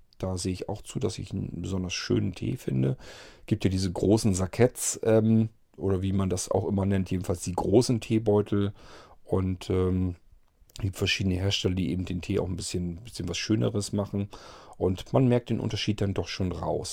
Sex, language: male, German